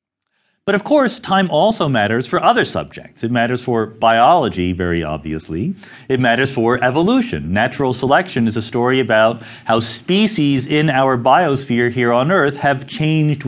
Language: English